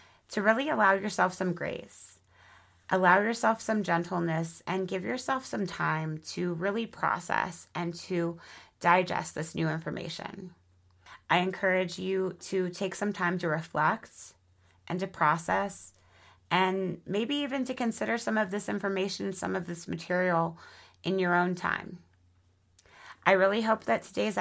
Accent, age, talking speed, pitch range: American, 30-49, 145 wpm, 170-205 Hz